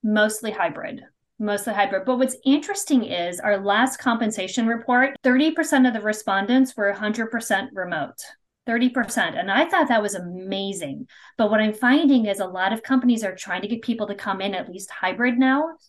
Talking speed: 190 wpm